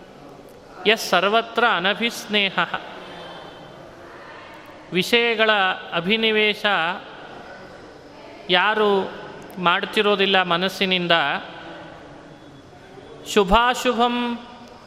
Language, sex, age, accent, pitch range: Kannada, male, 30-49, native, 185-230 Hz